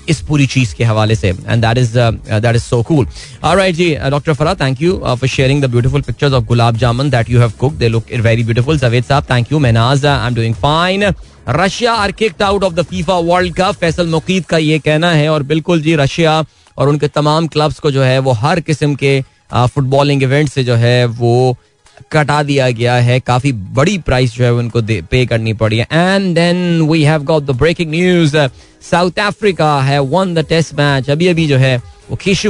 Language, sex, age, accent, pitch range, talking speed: Hindi, male, 20-39, native, 130-165 Hz, 115 wpm